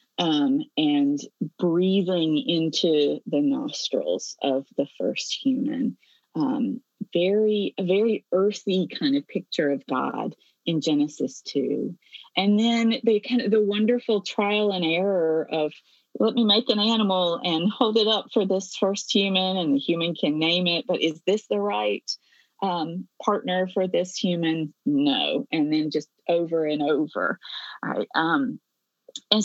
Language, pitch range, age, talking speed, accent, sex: English, 170-245 Hz, 30-49, 150 wpm, American, female